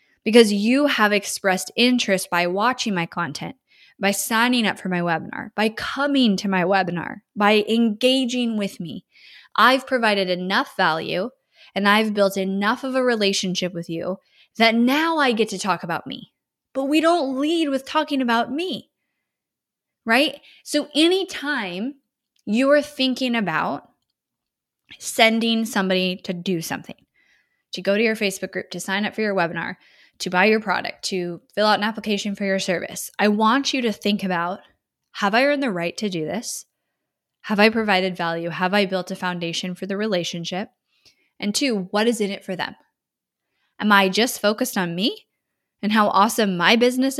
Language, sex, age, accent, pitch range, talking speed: English, female, 10-29, American, 190-245 Hz, 170 wpm